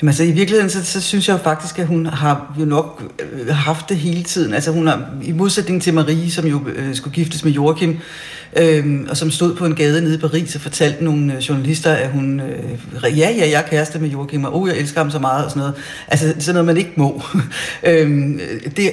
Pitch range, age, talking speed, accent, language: 140-165 Hz, 60-79, 220 wpm, native, Danish